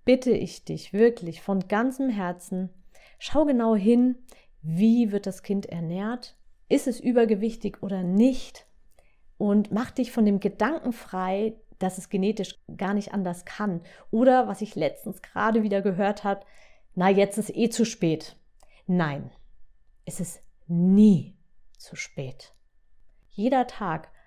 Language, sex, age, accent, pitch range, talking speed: German, female, 30-49, German, 170-220 Hz, 140 wpm